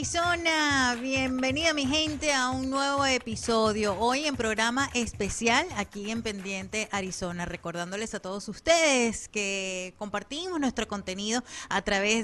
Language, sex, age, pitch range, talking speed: Spanish, female, 30-49, 200-260 Hz, 125 wpm